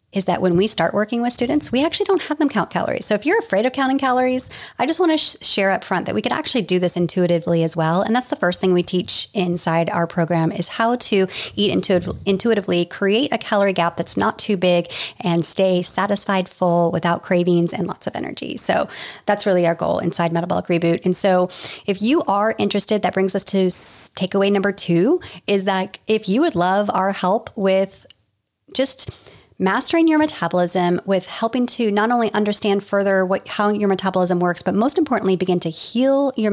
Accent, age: American, 30-49